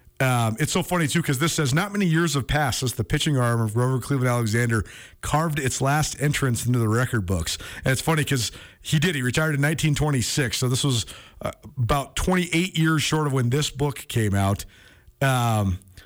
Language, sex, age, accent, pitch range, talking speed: English, male, 40-59, American, 115-170 Hz, 200 wpm